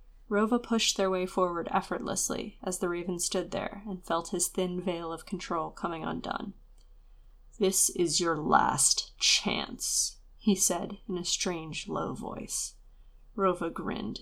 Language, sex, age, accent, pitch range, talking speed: English, female, 20-39, American, 175-215 Hz, 145 wpm